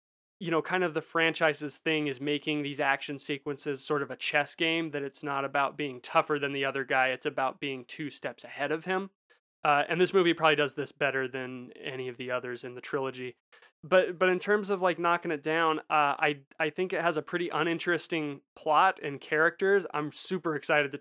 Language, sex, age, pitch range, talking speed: English, male, 20-39, 140-160 Hz, 215 wpm